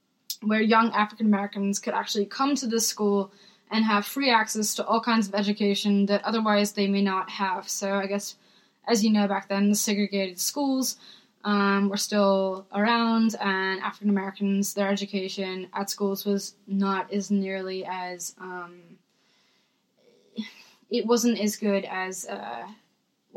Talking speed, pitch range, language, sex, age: 145 wpm, 195-220 Hz, English, female, 10-29